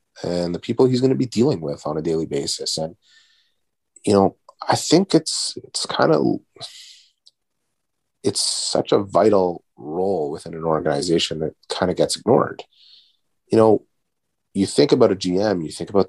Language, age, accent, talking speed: English, 30-49, American, 170 wpm